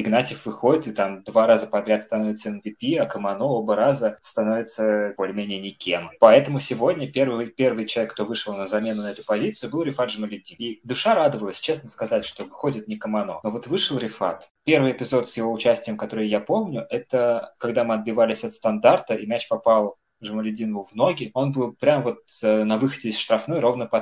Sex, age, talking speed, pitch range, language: male, 20-39, 185 wpm, 110-125 Hz, Russian